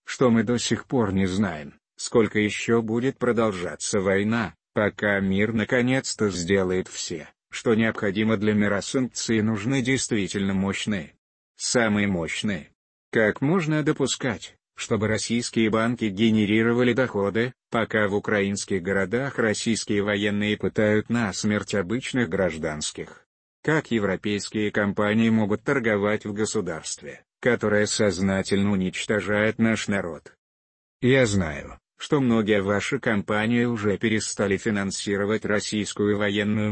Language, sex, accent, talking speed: Russian, male, native, 110 wpm